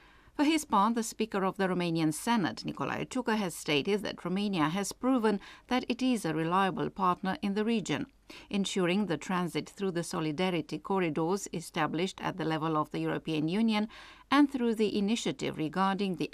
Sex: female